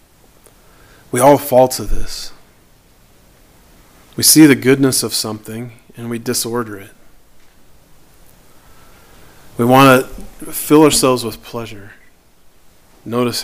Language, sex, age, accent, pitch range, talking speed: English, male, 40-59, American, 110-125 Hz, 105 wpm